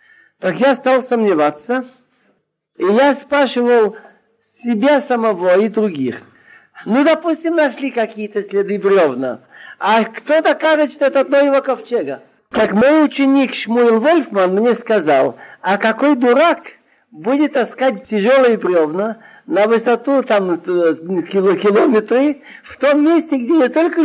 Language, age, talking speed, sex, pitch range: Russian, 50-69, 115 wpm, male, 210-275 Hz